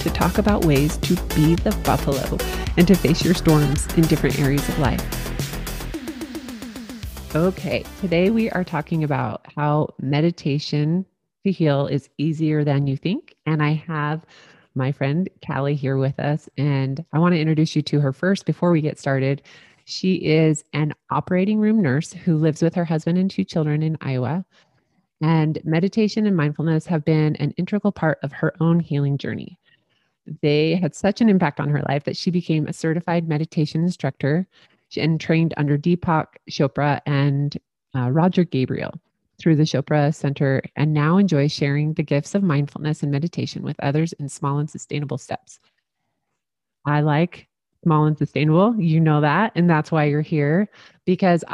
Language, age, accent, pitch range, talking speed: English, 30-49, American, 145-175 Hz, 170 wpm